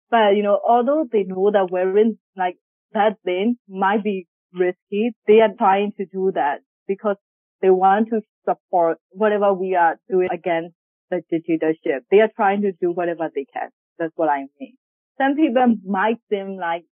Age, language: 30-49, English